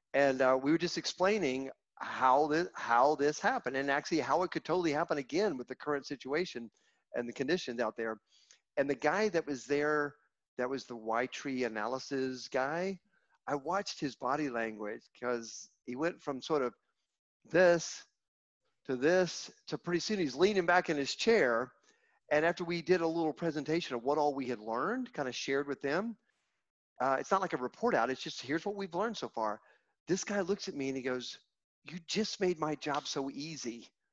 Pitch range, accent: 130-180 Hz, American